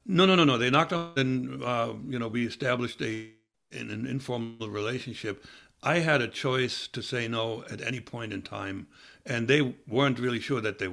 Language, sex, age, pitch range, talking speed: English, male, 60-79, 105-130 Hz, 205 wpm